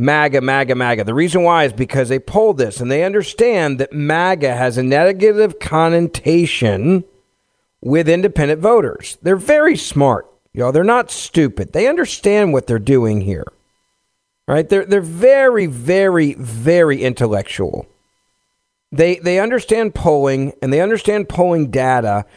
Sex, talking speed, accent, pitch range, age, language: male, 145 wpm, American, 130-195 Hz, 50-69, English